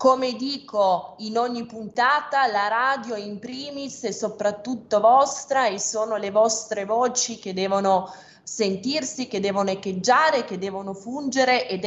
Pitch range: 195-235 Hz